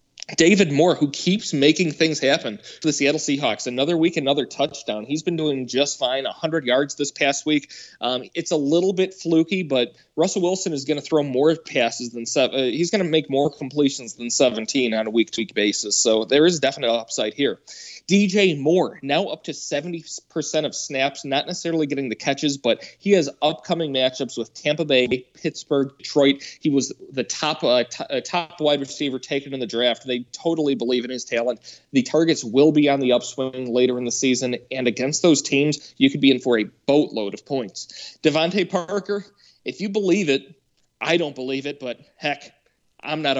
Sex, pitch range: male, 125-160 Hz